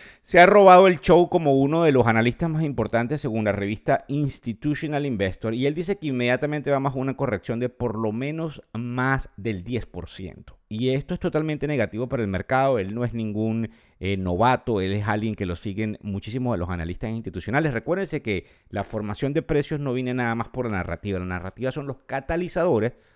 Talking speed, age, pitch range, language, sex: 195 wpm, 50-69, 105-140 Hz, Spanish, male